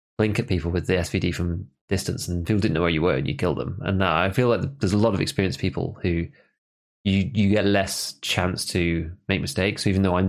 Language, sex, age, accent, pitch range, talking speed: English, male, 20-39, British, 85-105 Hz, 250 wpm